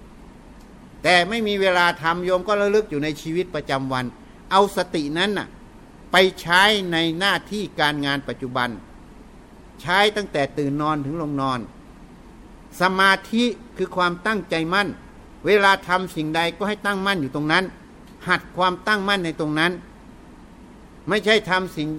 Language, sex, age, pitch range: Thai, male, 60-79, 155-195 Hz